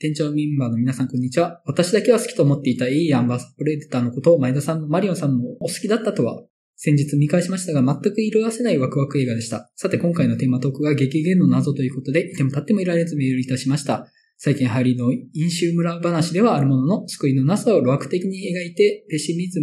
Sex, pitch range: male, 135-180 Hz